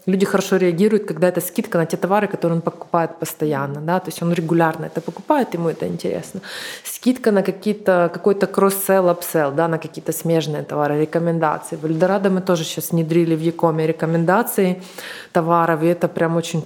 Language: Russian